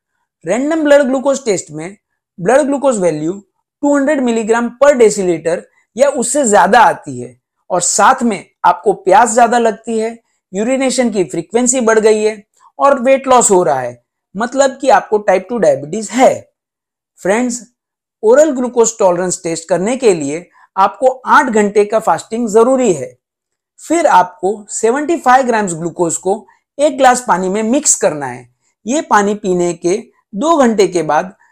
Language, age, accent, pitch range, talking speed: Hindi, 50-69, native, 180-270 Hz, 90 wpm